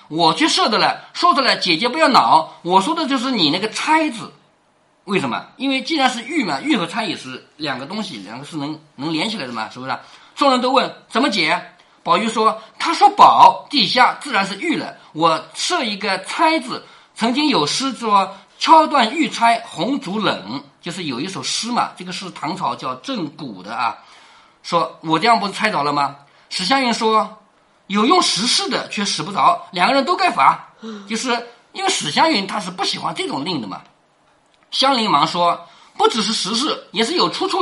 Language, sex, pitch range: Chinese, male, 190-305 Hz